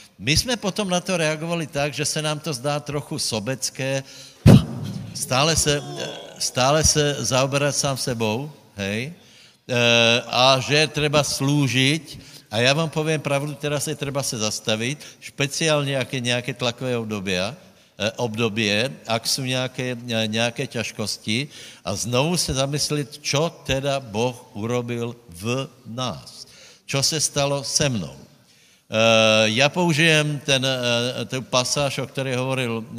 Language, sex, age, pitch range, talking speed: Slovak, male, 60-79, 115-145 Hz, 125 wpm